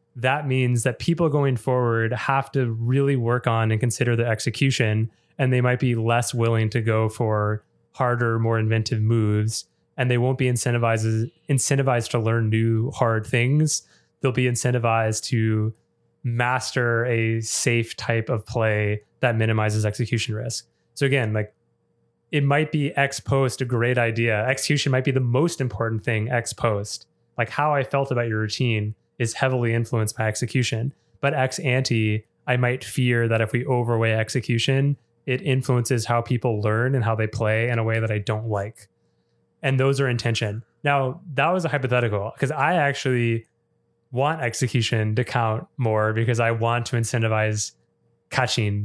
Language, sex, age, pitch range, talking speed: English, male, 20-39, 110-130 Hz, 165 wpm